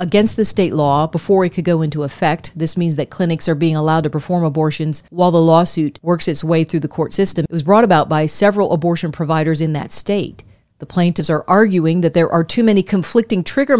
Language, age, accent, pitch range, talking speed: English, 40-59, American, 160-185 Hz, 225 wpm